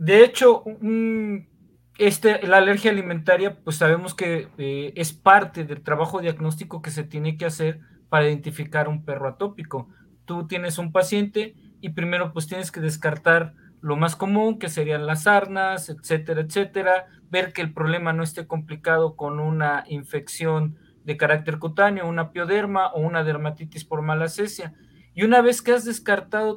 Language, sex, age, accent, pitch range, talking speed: Spanish, male, 40-59, Mexican, 155-190 Hz, 165 wpm